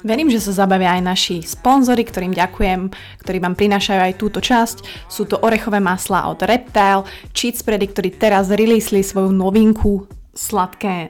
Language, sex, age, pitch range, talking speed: Slovak, female, 20-39, 185-210 Hz, 155 wpm